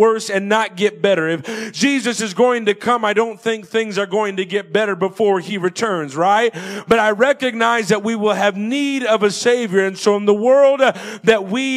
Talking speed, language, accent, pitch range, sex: 215 wpm, English, American, 210-265 Hz, male